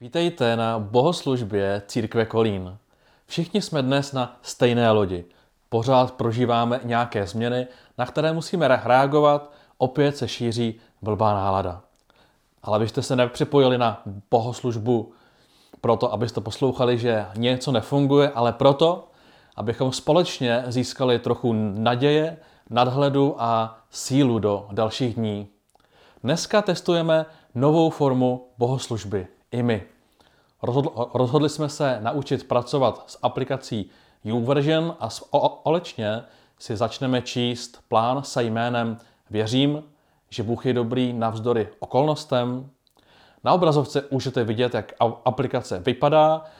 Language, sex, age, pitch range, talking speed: Czech, male, 30-49, 115-140 Hz, 110 wpm